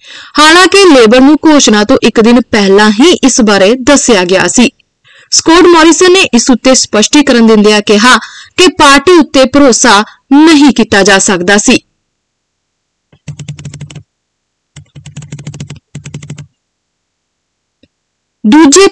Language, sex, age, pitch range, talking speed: Punjabi, female, 30-49, 215-295 Hz, 110 wpm